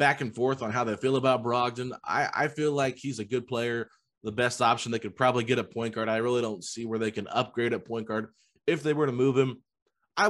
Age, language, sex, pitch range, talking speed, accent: 20-39, English, male, 110-140 Hz, 260 wpm, American